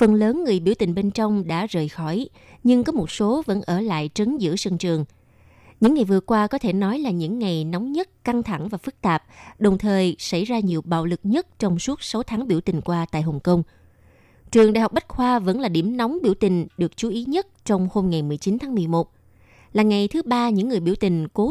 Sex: female